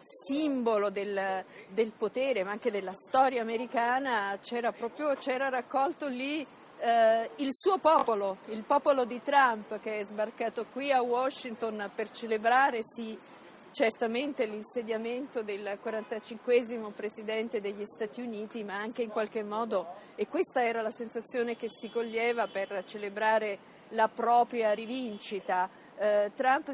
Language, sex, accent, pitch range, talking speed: Italian, female, native, 220-260 Hz, 130 wpm